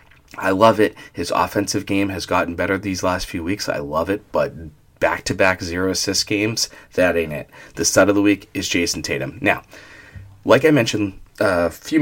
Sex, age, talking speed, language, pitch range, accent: male, 30-49, 185 wpm, English, 90-115 Hz, American